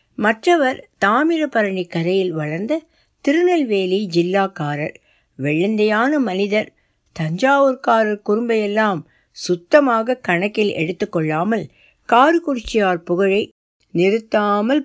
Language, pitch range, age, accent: Tamil, 170-220 Hz, 60-79, native